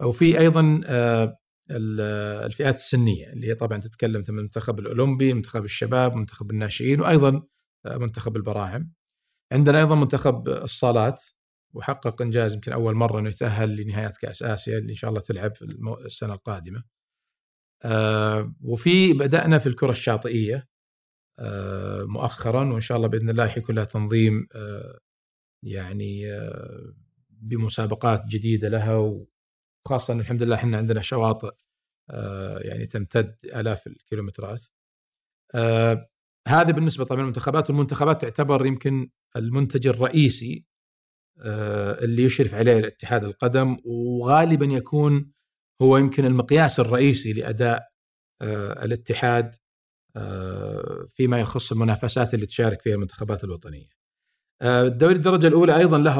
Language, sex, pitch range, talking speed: Arabic, male, 110-130 Hz, 115 wpm